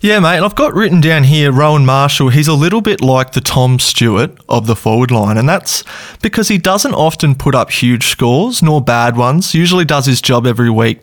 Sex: male